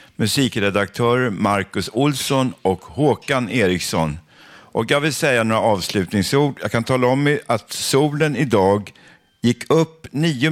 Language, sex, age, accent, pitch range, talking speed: Swedish, male, 50-69, native, 105-140 Hz, 125 wpm